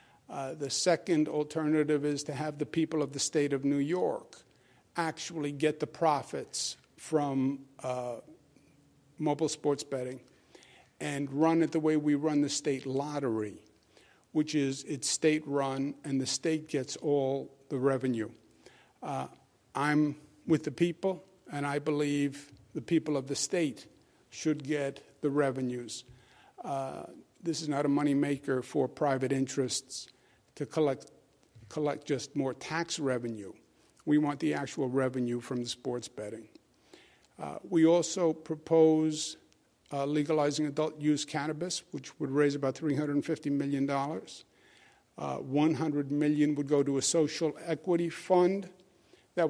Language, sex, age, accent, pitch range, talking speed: English, male, 50-69, American, 135-155 Hz, 140 wpm